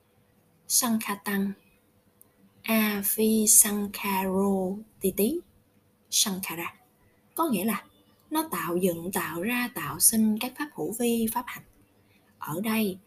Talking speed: 95 wpm